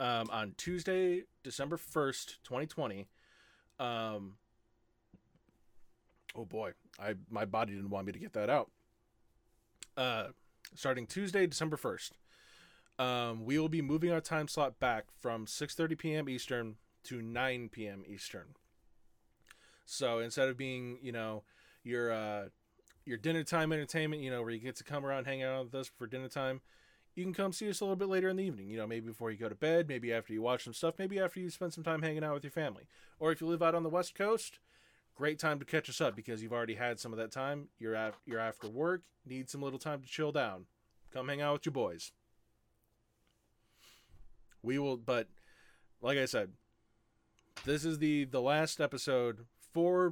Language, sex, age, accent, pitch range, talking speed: English, male, 20-39, American, 115-160 Hz, 190 wpm